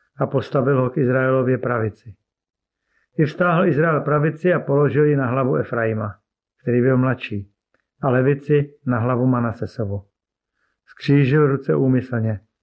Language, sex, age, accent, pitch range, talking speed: Czech, male, 50-69, native, 125-145 Hz, 130 wpm